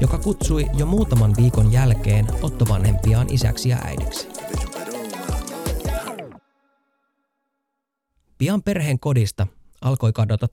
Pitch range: 90-130 Hz